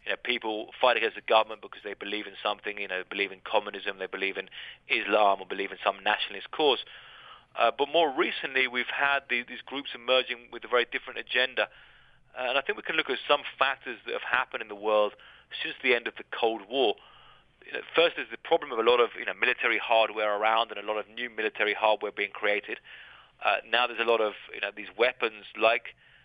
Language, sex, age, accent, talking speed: English, male, 30-49, British, 230 wpm